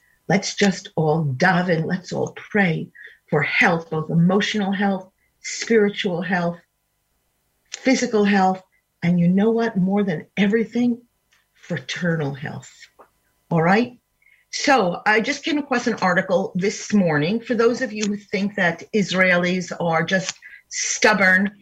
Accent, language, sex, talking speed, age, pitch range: American, English, female, 135 wpm, 50-69, 175-235 Hz